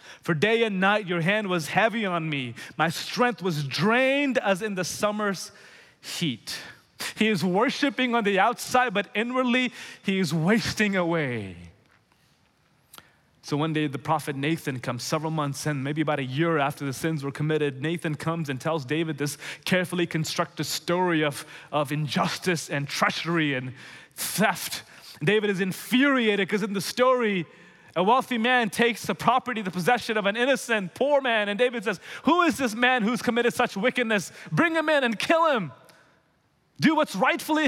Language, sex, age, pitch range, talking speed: English, male, 30-49, 140-220 Hz, 170 wpm